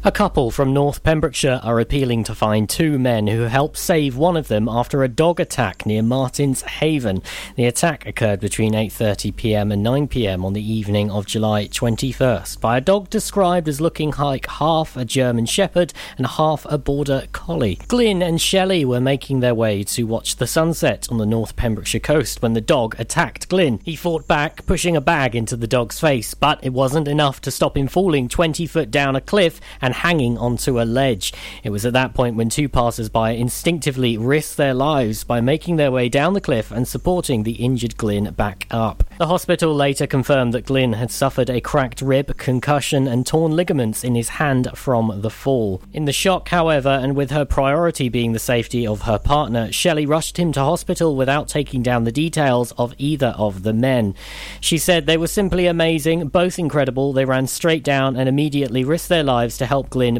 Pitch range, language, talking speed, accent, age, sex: 115-150 Hz, English, 195 wpm, British, 40-59, male